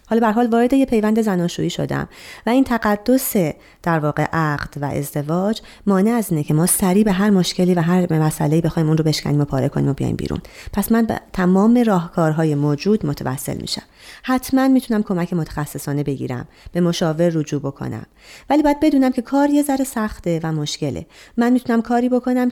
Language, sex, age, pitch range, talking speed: Persian, female, 30-49, 155-230 Hz, 180 wpm